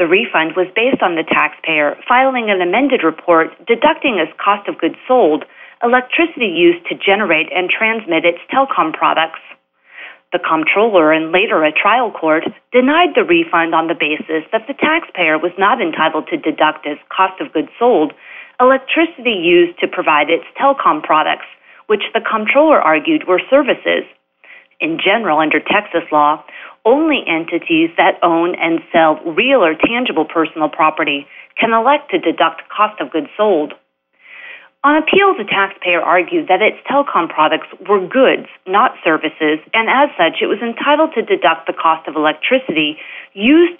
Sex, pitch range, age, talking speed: female, 160-270 Hz, 40-59, 160 wpm